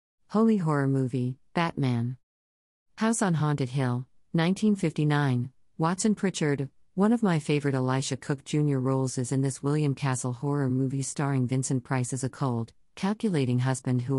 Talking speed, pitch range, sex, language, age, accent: 150 wpm, 130-160 Hz, female, English, 50-69, American